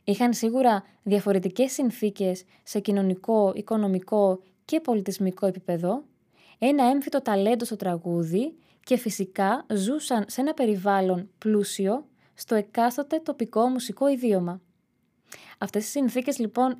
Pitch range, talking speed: 190-245 Hz, 110 wpm